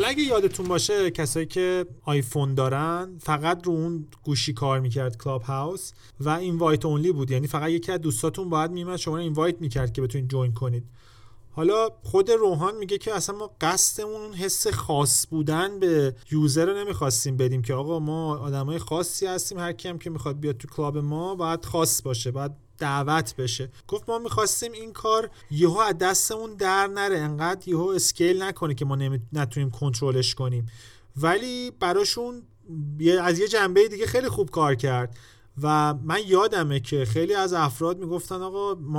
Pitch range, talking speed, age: 135-185 Hz, 170 wpm, 30-49